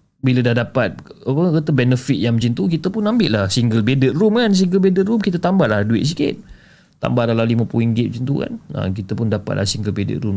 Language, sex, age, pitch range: Malay, male, 30-49, 100-145 Hz